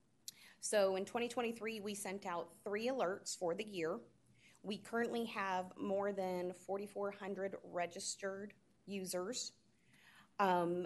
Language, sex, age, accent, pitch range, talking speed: English, female, 30-49, American, 175-205 Hz, 110 wpm